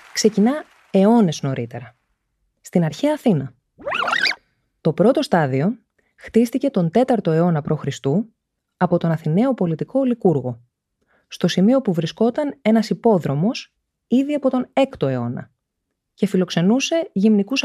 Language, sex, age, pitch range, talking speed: Greek, female, 20-39, 160-235 Hz, 110 wpm